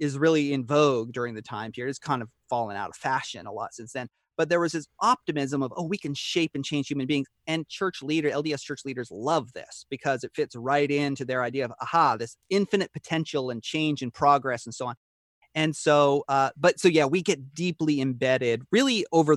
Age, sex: 30-49, male